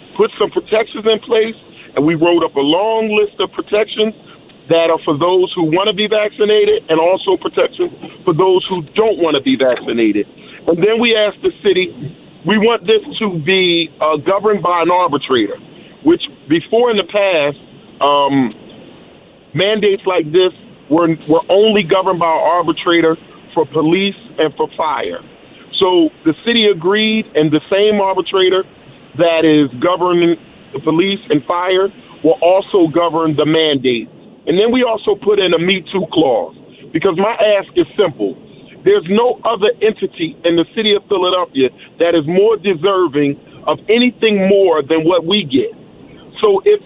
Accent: American